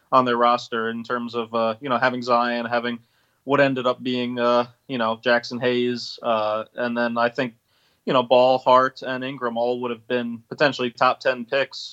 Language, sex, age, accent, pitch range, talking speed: English, male, 20-39, American, 120-130 Hz, 200 wpm